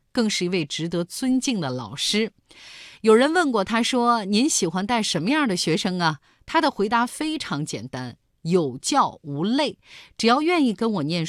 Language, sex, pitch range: Chinese, female, 160-245 Hz